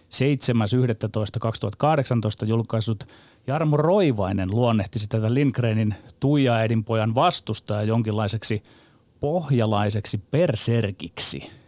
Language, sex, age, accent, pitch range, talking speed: Finnish, male, 30-49, native, 110-135 Hz, 65 wpm